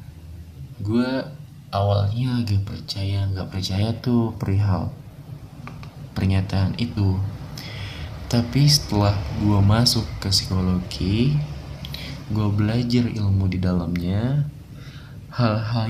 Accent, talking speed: native, 85 wpm